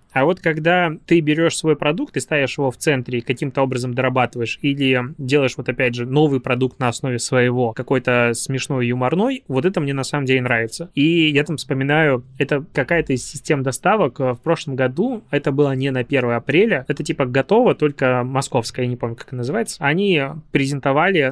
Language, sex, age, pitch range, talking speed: Russian, male, 20-39, 125-155 Hz, 185 wpm